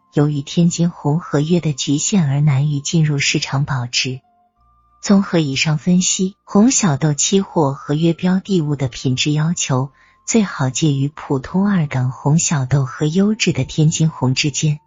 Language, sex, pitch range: Chinese, female, 145-195 Hz